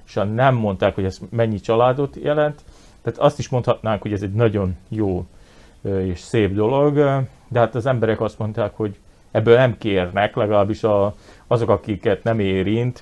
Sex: male